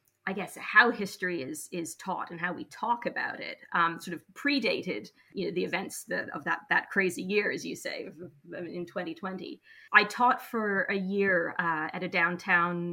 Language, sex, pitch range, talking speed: English, female, 175-205 Hz, 190 wpm